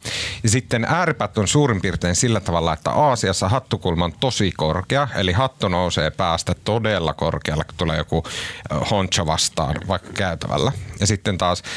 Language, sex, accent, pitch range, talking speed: Finnish, male, native, 90-125 Hz, 155 wpm